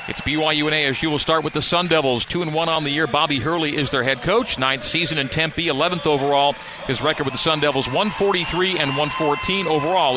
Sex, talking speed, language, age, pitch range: male, 225 wpm, English, 40-59, 140-175 Hz